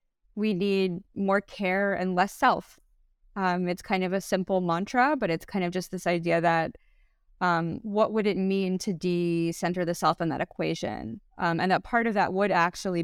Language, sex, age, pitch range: English, female, 20-39, 160-200 Hz